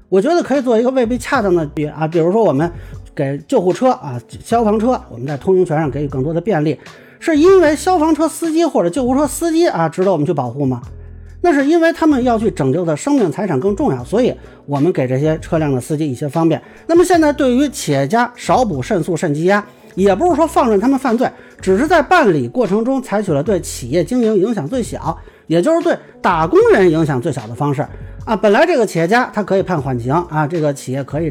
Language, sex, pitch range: Chinese, male, 145-235 Hz